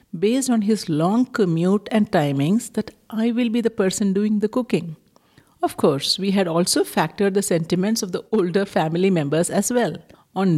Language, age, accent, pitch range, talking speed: English, 60-79, Indian, 170-220 Hz, 180 wpm